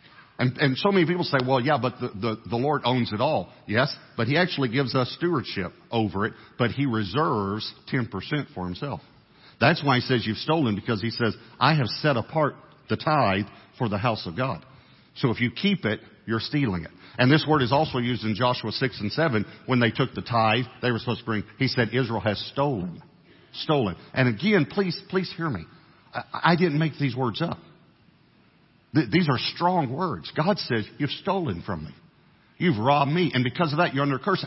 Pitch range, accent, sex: 115-155 Hz, American, male